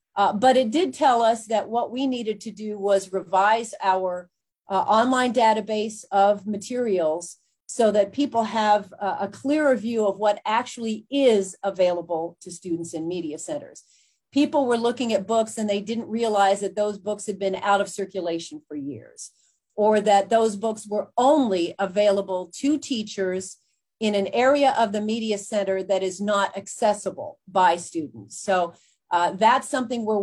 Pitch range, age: 190-230 Hz, 40-59